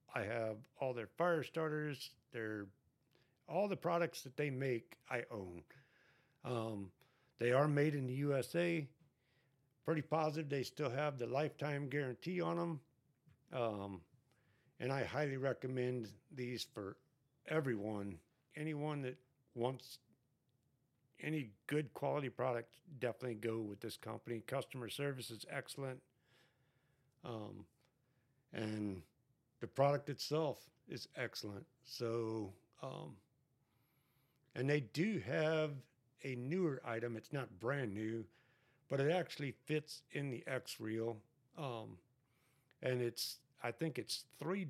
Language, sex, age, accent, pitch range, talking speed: English, male, 50-69, American, 120-145 Hz, 120 wpm